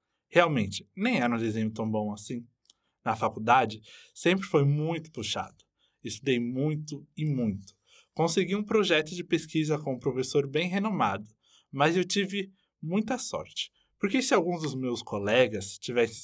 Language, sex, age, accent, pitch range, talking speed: Portuguese, male, 20-39, Brazilian, 110-170 Hz, 150 wpm